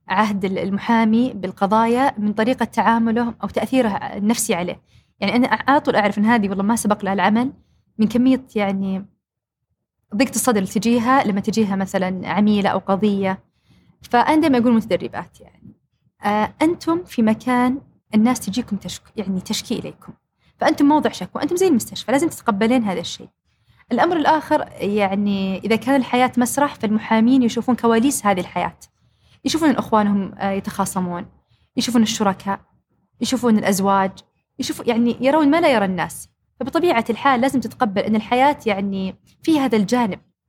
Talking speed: 135 wpm